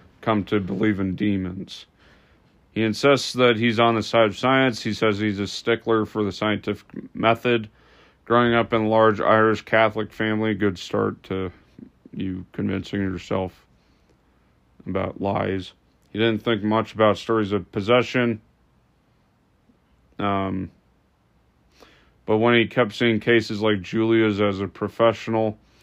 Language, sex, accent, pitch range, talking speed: English, male, American, 100-115 Hz, 135 wpm